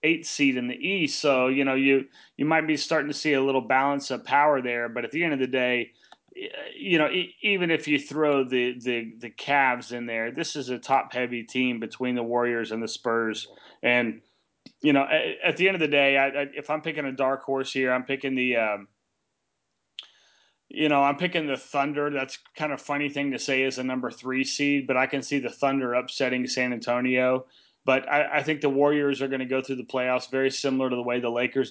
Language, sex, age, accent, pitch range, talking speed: English, male, 30-49, American, 125-145 Hz, 235 wpm